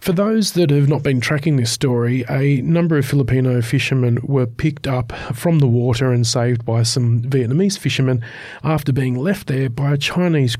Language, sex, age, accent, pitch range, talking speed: English, male, 40-59, Australian, 125-170 Hz, 185 wpm